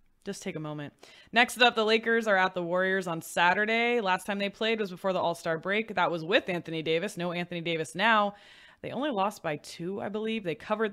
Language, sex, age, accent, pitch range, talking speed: English, female, 20-39, American, 165-215 Hz, 225 wpm